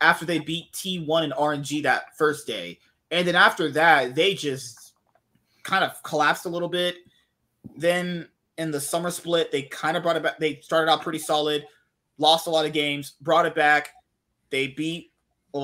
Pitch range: 150-185 Hz